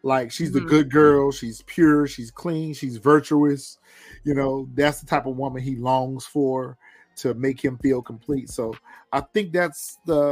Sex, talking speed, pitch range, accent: male, 180 wpm, 130-160 Hz, American